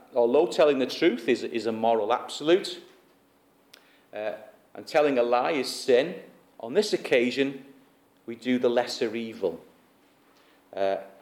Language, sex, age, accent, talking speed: English, male, 40-59, British, 135 wpm